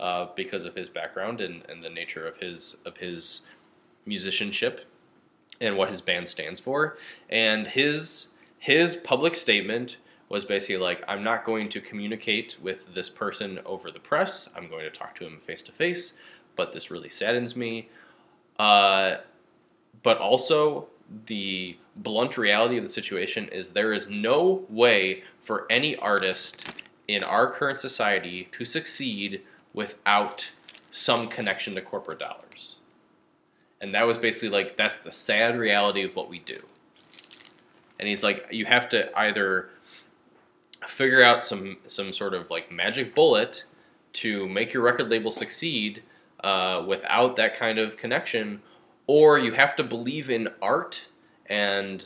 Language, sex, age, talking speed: English, male, 20-39, 150 wpm